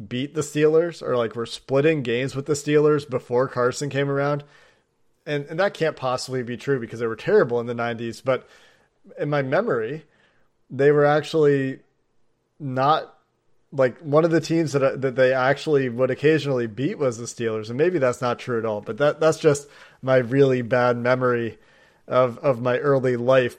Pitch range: 125-145 Hz